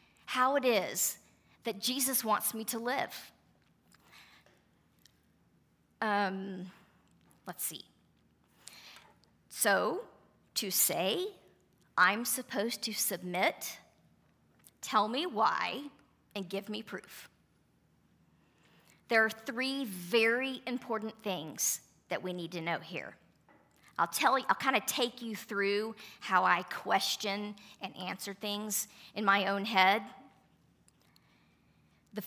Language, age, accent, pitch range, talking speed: English, 40-59, American, 195-260 Hz, 110 wpm